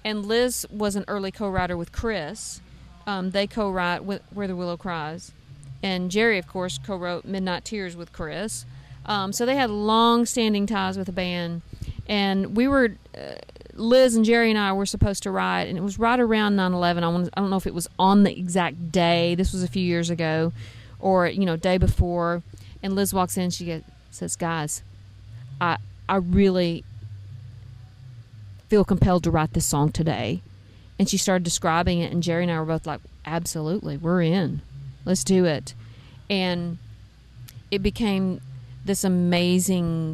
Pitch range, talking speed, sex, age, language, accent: 135-195 Hz, 170 wpm, female, 40-59, English, American